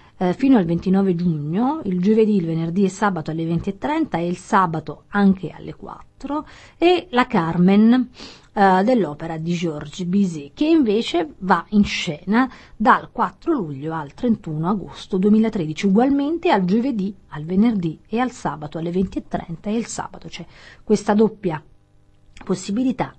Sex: female